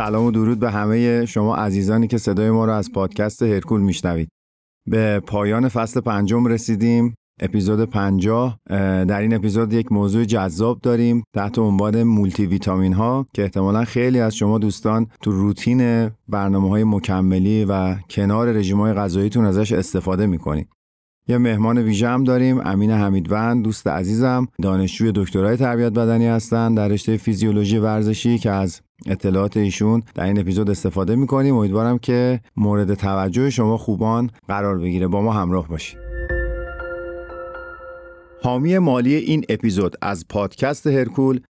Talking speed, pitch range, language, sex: 140 wpm, 100-120 Hz, Persian, male